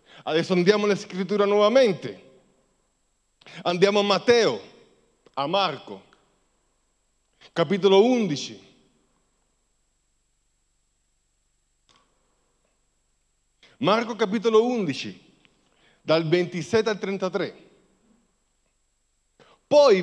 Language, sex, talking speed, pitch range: Italian, male, 60 wpm, 150-220 Hz